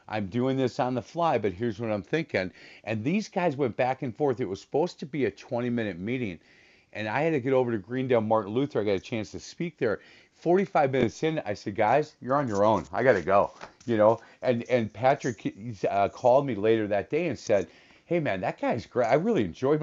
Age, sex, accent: 40-59, male, American